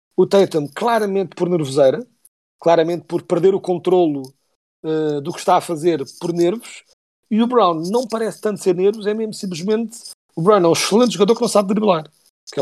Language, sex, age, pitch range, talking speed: Portuguese, male, 40-59, 155-200 Hz, 190 wpm